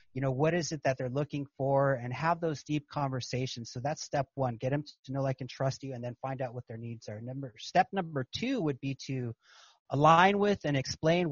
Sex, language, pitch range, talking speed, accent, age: male, English, 130-155 Hz, 245 wpm, American, 30-49